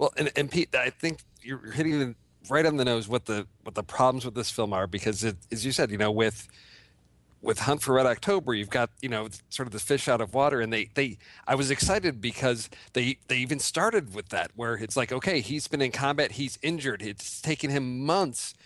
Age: 40-59